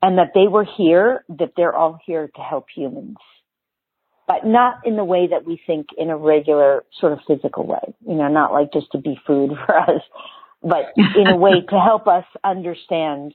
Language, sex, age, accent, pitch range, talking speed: English, female, 50-69, American, 150-195 Hz, 200 wpm